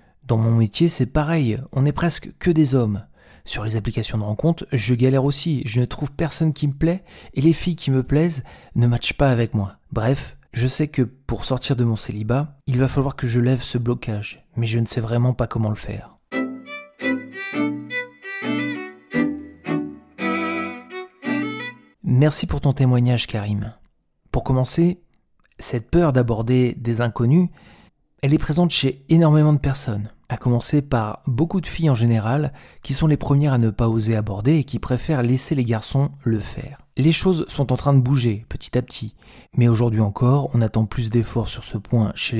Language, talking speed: French, 180 wpm